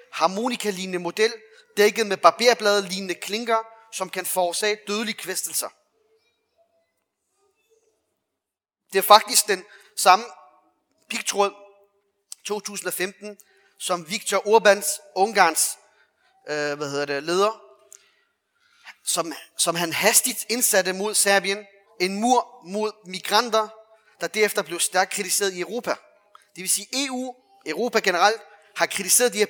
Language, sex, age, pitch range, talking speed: Danish, male, 30-49, 190-240 Hz, 110 wpm